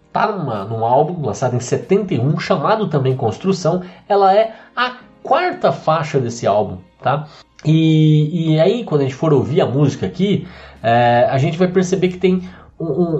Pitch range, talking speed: 130-180 Hz, 150 wpm